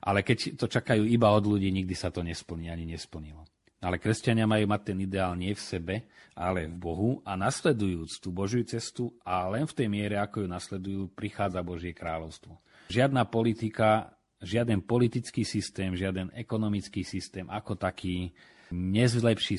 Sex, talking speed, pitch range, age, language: male, 160 wpm, 90-110 Hz, 40-59, Slovak